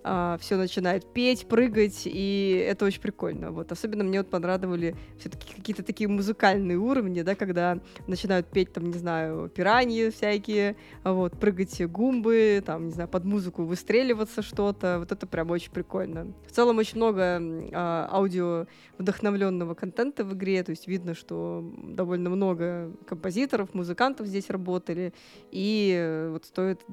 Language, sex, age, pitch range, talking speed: Russian, female, 20-39, 180-210 Hz, 120 wpm